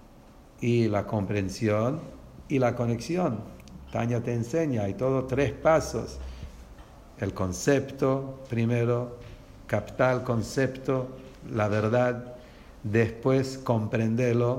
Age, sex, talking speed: 60-79, male, 95 wpm